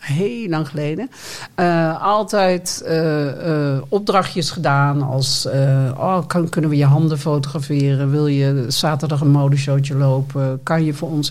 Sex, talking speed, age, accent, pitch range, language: male, 150 wpm, 50-69, Dutch, 135-165 Hz, Dutch